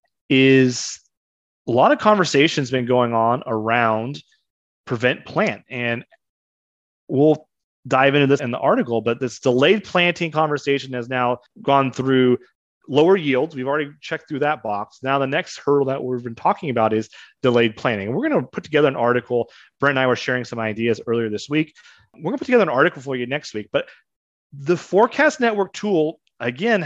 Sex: male